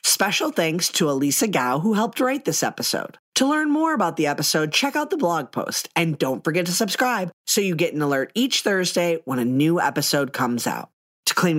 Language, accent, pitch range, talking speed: English, American, 145-195 Hz, 210 wpm